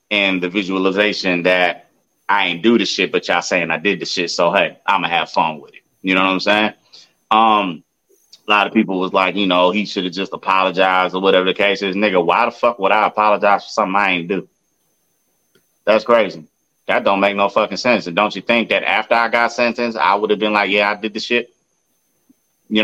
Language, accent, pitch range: English, American, 95-115 Hz